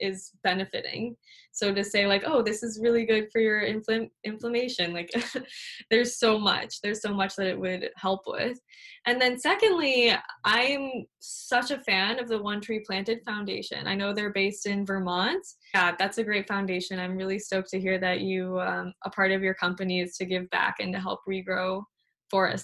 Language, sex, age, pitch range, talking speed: English, female, 10-29, 195-240 Hz, 190 wpm